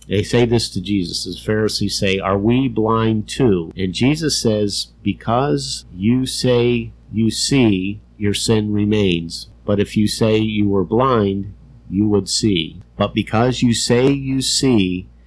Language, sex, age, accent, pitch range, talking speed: English, male, 50-69, American, 95-115 Hz, 155 wpm